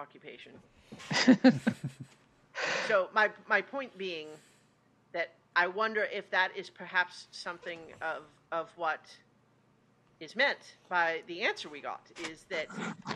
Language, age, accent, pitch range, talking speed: English, 40-59, American, 165-210 Hz, 120 wpm